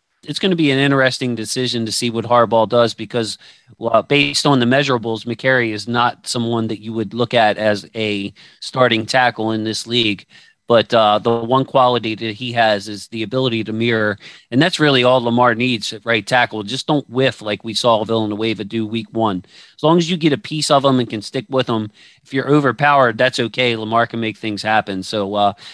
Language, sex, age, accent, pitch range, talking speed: English, male, 40-59, American, 110-130 Hz, 210 wpm